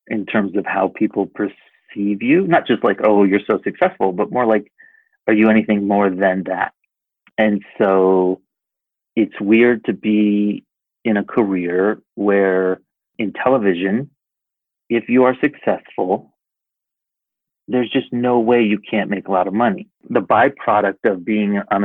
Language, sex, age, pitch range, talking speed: English, male, 30-49, 100-115 Hz, 150 wpm